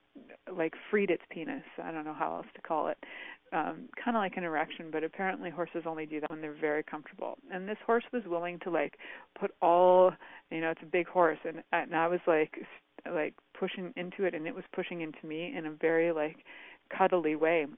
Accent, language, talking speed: American, English, 215 wpm